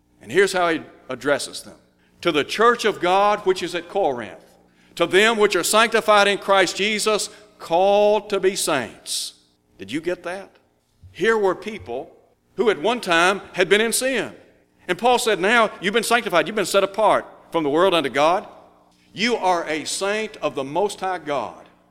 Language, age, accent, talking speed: English, 60-79, American, 185 wpm